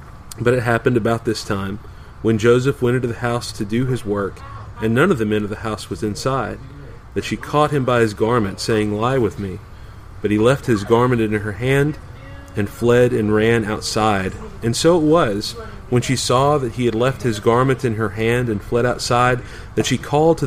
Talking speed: 215 wpm